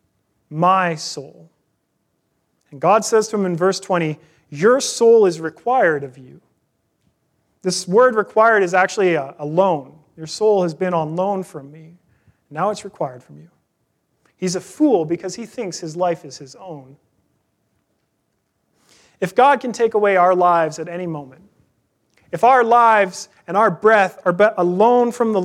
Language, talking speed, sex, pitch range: English, 165 wpm, male, 160-215 Hz